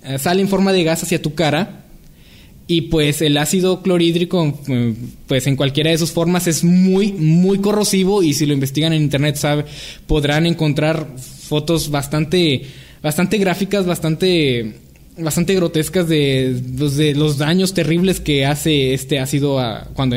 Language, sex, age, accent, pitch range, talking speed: Spanish, male, 20-39, Mexican, 140-170 Hz, 145 wpm